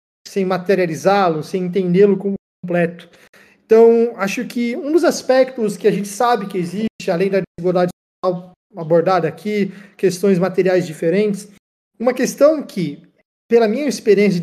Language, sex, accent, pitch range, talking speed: Portuguese, male, Brazilian, 180-220 Hz, 135 wpm